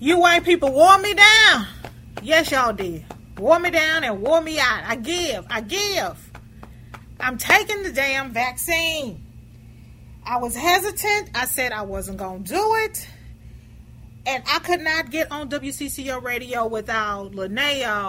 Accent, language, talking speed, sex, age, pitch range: American, English, 155 wpm, female, 30-49, 210-310 Hz